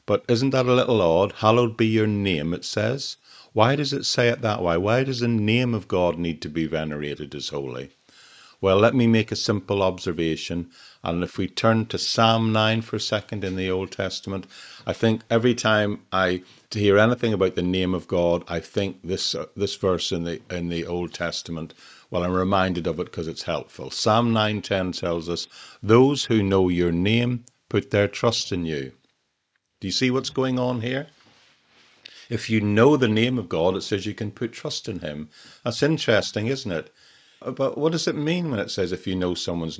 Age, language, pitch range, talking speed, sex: 50-69, English, 90-115 Hz, 210 wpm, male